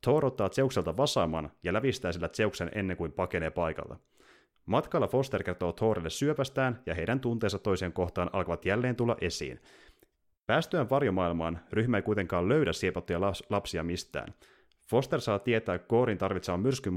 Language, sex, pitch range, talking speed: Finnish, male, 90-120 Hz, 140 wpm